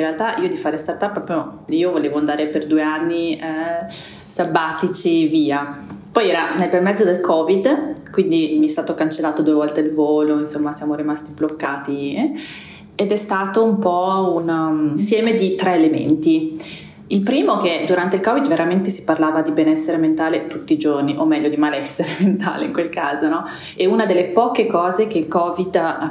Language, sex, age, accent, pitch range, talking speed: Italian, female, 20-39, native, 155-185 Hz, 185 wpm